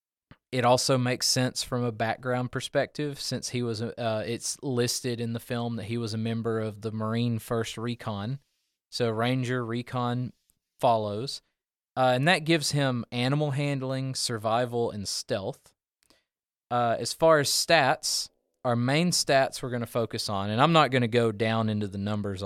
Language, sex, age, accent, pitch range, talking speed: English, male, 20-39, American, 110-130 Hz, 170 wpm